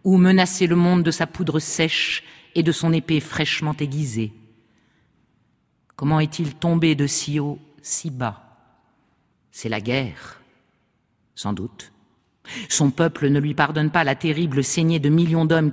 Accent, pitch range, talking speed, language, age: French, 145-175 Hz, 150 wpm, French, 50-69